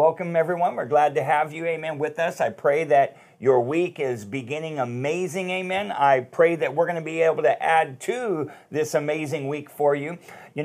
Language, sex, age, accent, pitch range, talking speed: English, male, 50-69, American, 130-165 Hz, 205 wpm